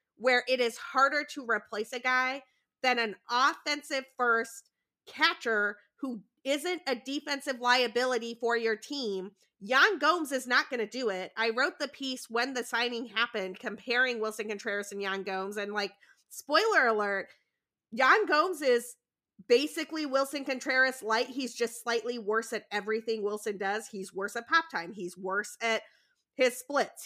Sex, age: female, 30-49